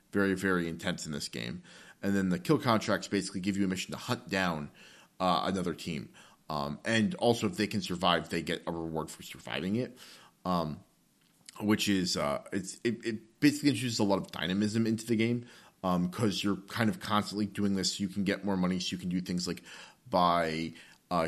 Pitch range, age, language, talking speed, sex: 90-110 Hz, 30-49, English, 210 wpm, male